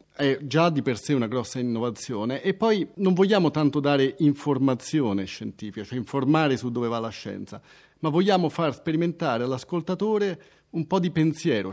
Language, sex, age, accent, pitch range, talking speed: Italian, male, 40-59, native, 130-180 Hz, 165 wpm